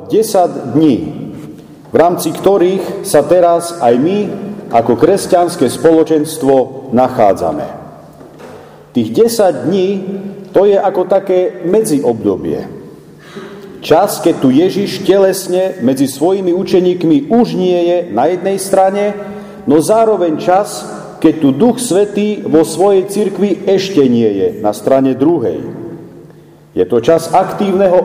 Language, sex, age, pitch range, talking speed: Slovak, male, 40-59, 145-195 Hz, 120 wpm